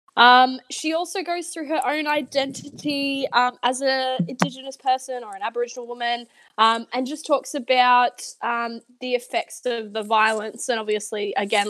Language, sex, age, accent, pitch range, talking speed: English, female, 10-29, Australian, 225-275 Hz, 160 wpm